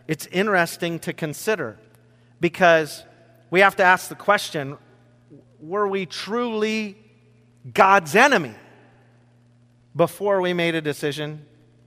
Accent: American